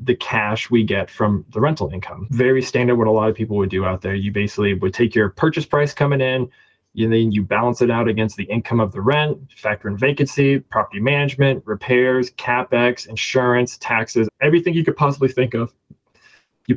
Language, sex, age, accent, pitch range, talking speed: English, male, 20-39, American, 105-130 Hz, 200 wpm